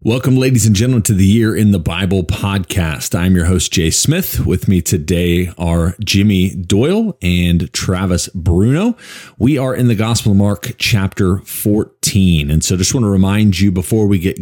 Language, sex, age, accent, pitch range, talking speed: English, male, 30-49, American, 85-110 Hz, 185 wpm